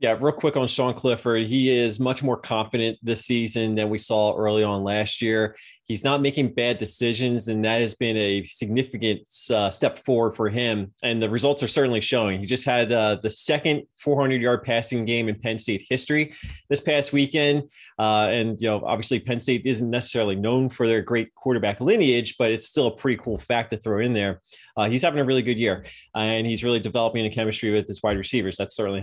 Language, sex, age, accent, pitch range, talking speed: English, male, 20-39, American, 110-130 Hz, 215 wpm